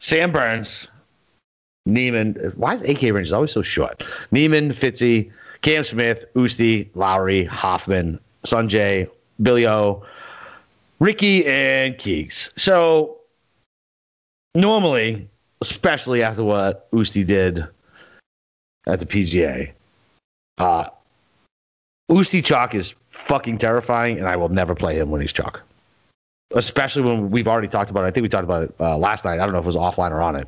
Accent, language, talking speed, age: American, English, 145 wpm, 30-49